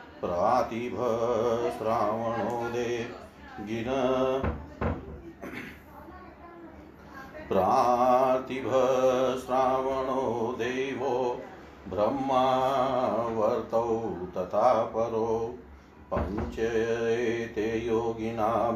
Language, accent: Hindi, native